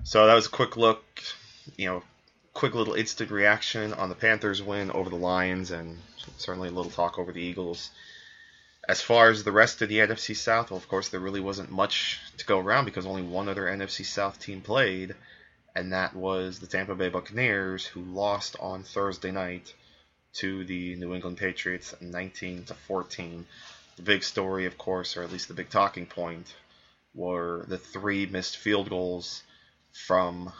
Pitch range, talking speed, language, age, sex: 90-100 Hz, 180 wpm, English, 20-39, male